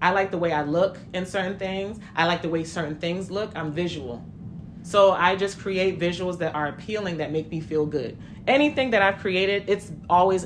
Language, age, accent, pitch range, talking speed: English, 30-49, American, 155-200 Hz, 210 wpm